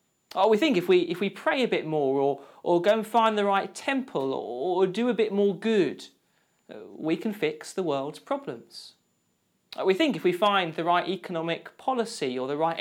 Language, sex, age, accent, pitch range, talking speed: English, male, 40-59, British, 175-235 Hz, 210 wpm